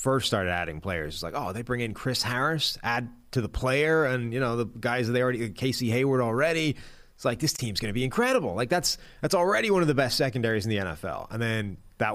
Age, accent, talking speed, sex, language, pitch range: 30-49, American, 245 wpm, male, English, 95-120 Hz